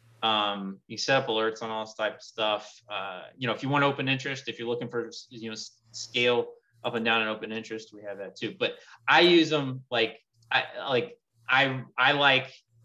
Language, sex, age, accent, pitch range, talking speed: English, male, 20-39, American, 115-135 Hz, 215 wpm